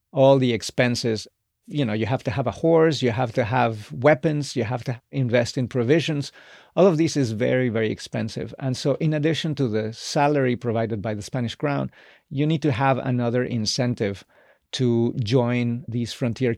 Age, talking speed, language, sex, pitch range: 40-59, 185 wpm, English, male, 120-145 Hz